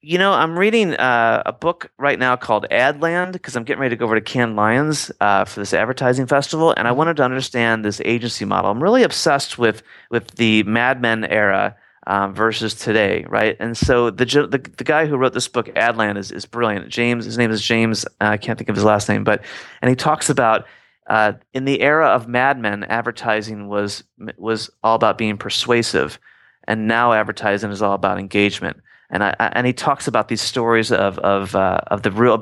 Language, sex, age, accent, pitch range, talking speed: English, male, 30-49, American, 105-125 Hz, 215 wpm